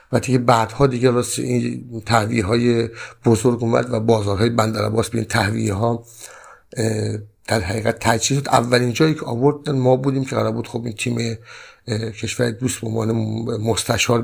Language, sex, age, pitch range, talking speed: Persian, male, 60-79, 120-155 Hz, 165 wpm